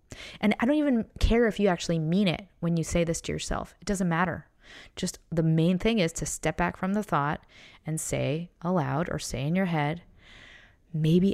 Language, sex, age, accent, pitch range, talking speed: English, female, 20-39, American, 160-195 Hz, 205 wpm